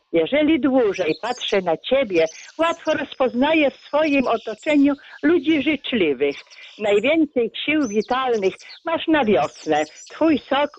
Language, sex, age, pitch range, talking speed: Polish, female, 50-69, 210-285 Hz, 110 wpm